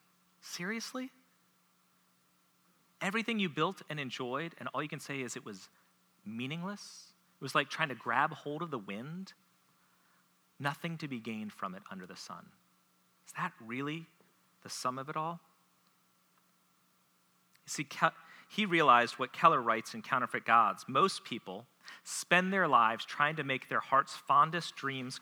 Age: 40-59